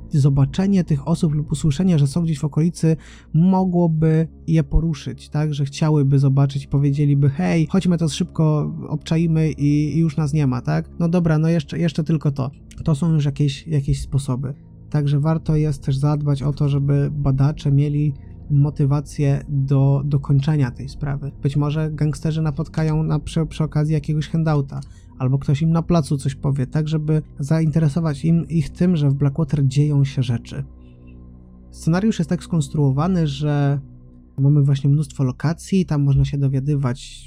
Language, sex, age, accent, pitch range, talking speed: Polish, male, 20-39, native, 135-155 Hz, 160 wpm